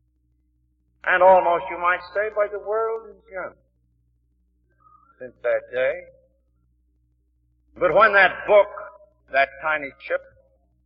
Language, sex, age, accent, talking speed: English, male, 60-79, American, 105 wpm